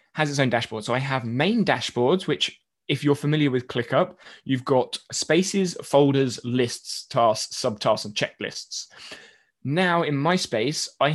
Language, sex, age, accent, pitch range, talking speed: English, male, 20-39, British, 120-155 Hz, 155 wpm